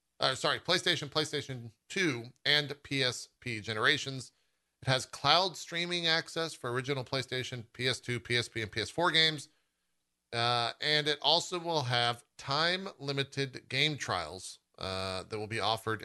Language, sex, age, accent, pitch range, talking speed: English, male, 40-59, American, 110-155 Hz, 130 wpm